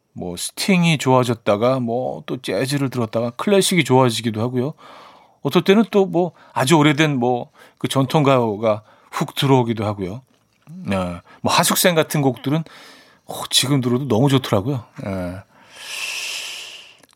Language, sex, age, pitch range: Korean, male, 40-59, 115-155 Hz